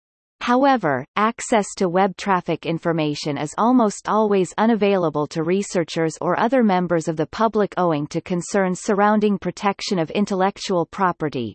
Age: 30-49